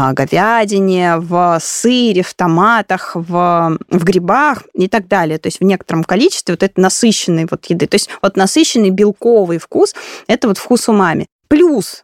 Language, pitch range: Russian, 185-250 Hz